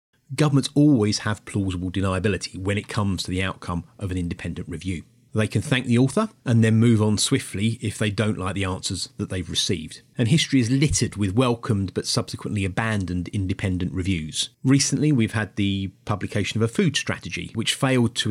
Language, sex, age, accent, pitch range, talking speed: English, male, 30-49, British, 100-130 Hz, 185 wpm